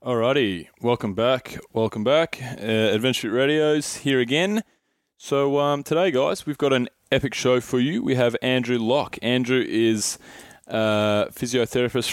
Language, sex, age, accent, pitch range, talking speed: English, male, 20-39, Australian, 110-125 Hz, 150 wpm